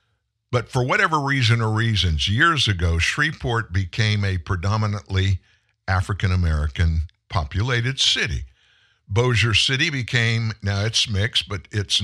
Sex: male